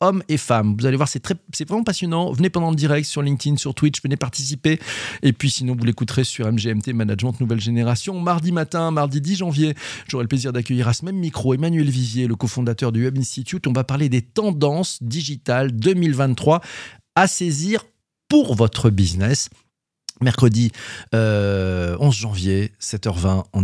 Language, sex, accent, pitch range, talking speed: French, male, French, 110-145 Hz, 175 wpm